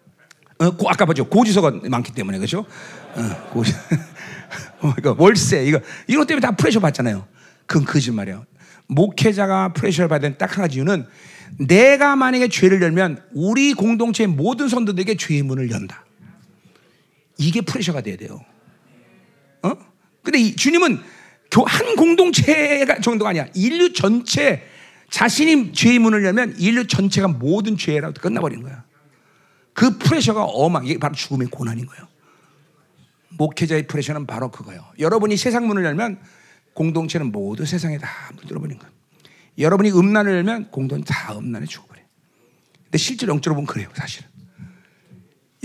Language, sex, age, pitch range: Korean, male, 40-59, 145-205 Hz